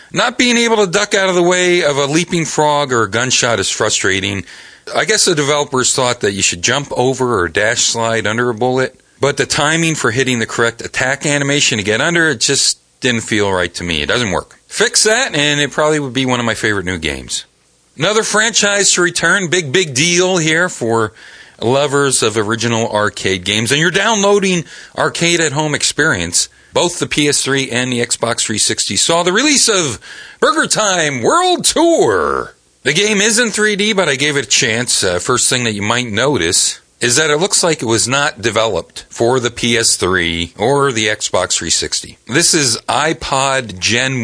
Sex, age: male, 40-59